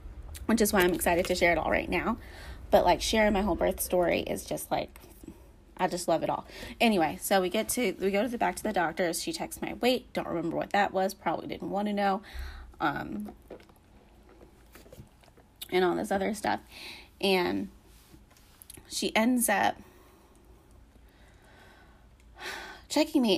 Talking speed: 165 wpm